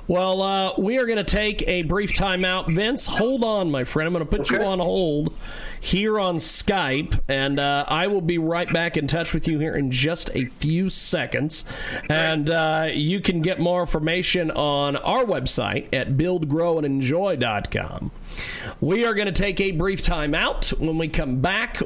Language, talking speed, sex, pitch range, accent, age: English, 180 wpm, male, 145-190 Hz, American, 40-59